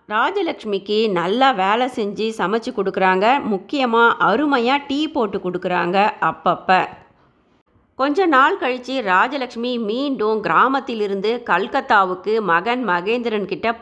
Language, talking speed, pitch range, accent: Tamil, 90 wpm, 195-260 Hz, native